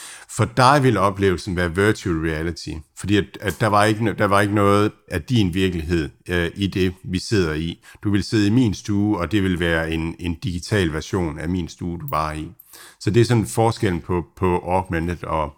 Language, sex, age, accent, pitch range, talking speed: Danish, male, 60-79, native, 90-115 Hz, 215 wpm